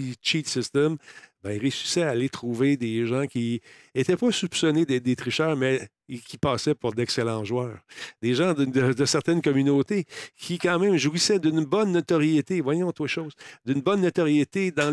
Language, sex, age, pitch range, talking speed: French, male, 50-69, 120-155 Hz, 175 wpm